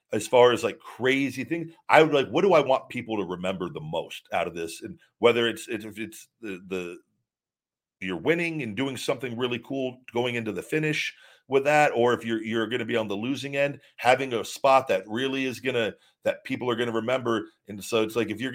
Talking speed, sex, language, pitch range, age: 235 wpm, male, English, 115-140 Hz, 40-59